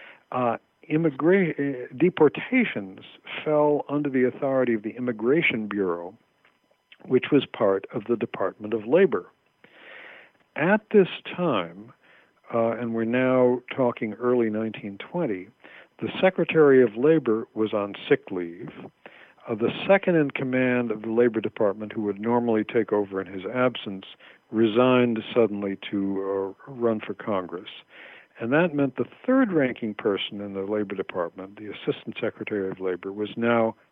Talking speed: 140 wpm